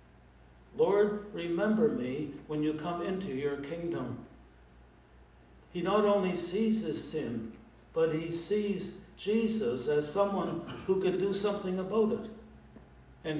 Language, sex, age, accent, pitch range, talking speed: English, male, 60-79, American, 125-195 Hz, 125 wpm